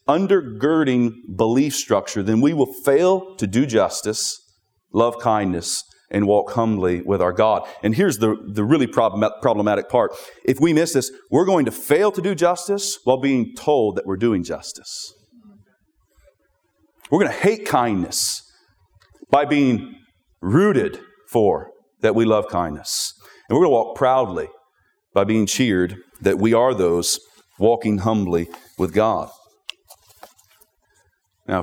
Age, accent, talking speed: 40-59, American, 140 wpm